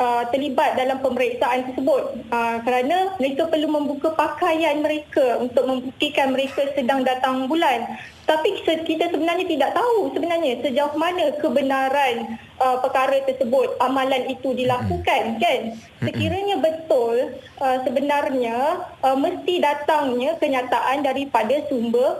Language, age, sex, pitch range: Malay, 20-39, female, 245-300 Hz